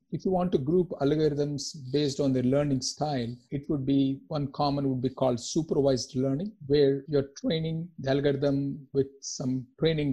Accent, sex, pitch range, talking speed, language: Indian, male, 130-145 Hz, 170 wpm, English